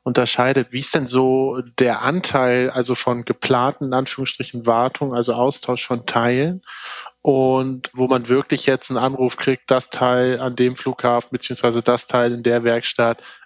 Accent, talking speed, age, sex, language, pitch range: German, 160 wpm, 20-39, male, German, 120-135 Hz